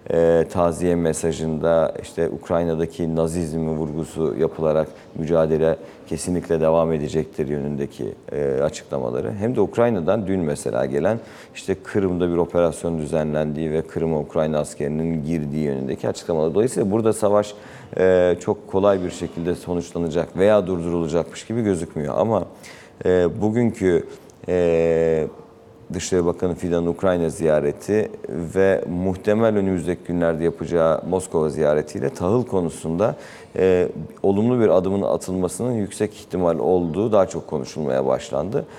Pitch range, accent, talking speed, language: 80-95 Hz, native, 110 wpm, Turkish